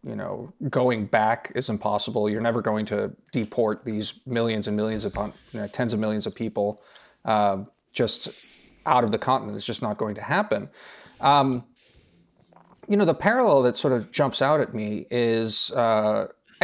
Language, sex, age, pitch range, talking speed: English, male, 30-49, 110-135 Hz, 175 wpm